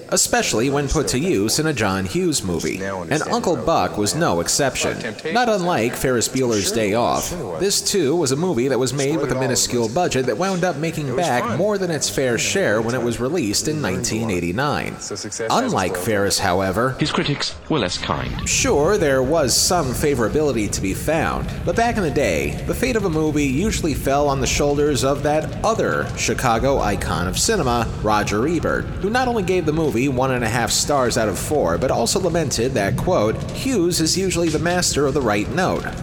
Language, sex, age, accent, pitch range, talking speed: English, male, 30-49, American, 120-175 Hz, 195 wpm